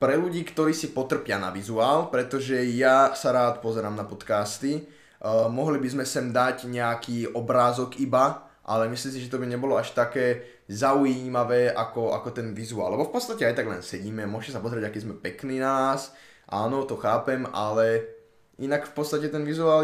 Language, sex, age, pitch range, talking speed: Slovak, male, 10-29, 110-135 Hz, 180 wpm